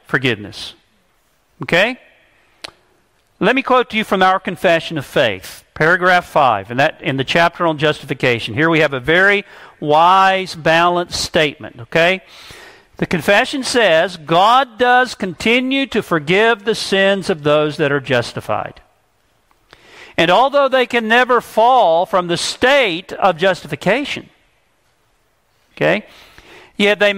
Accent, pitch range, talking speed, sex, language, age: American, 165-235 Hz, 125 wpm, male, English, 50-69